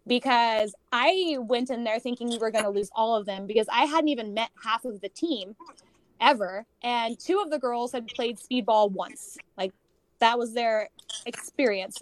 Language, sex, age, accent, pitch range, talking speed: English, female, 20-39, American, 210-265 Hz, 190 wpm